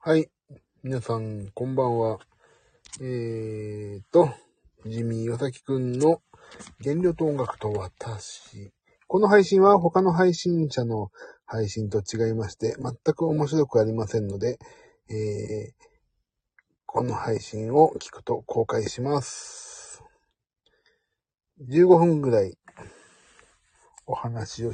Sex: male